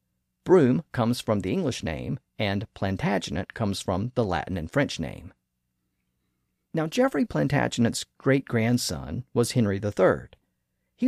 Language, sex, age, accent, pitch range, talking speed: English, male, 50-69, American, 85-135 Hz, 125 wpm